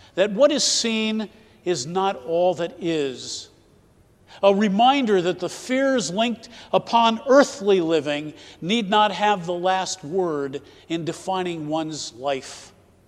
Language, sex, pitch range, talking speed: English, male, 165-230 Hz, 130 wpm